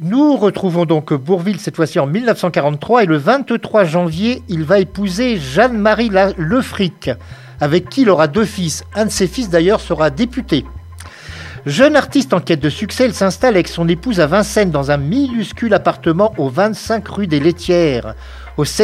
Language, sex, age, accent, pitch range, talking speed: French, male, 50-69, French, 155-210 Hz, 170 wpm